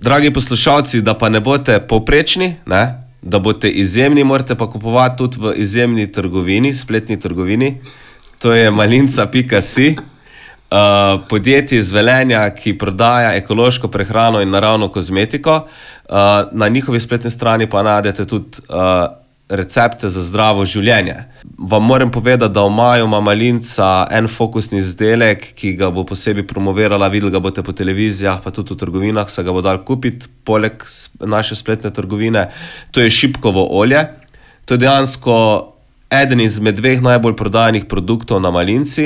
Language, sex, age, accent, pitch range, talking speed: English, male, 30-49, Croatian, 100-125 Hz, 145 wpm